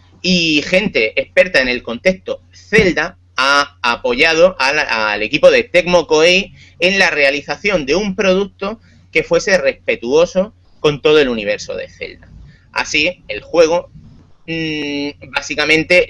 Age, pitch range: 30-49, 145-205 Hz